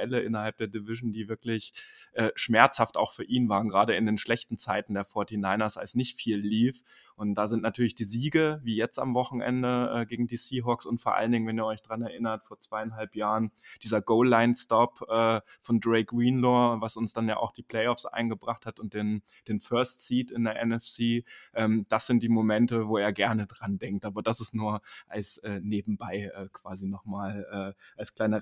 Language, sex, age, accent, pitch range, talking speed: German, male, 20-39, German, 105-125 Hz, 200 wpm